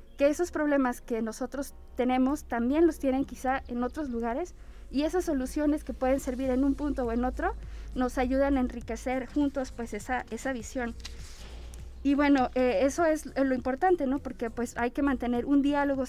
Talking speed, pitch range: 185 wpm, 245-290 Hz